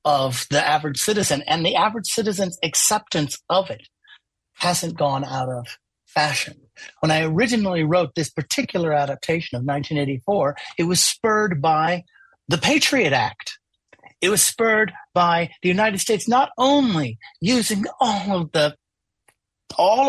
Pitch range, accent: 160-215 Hz, American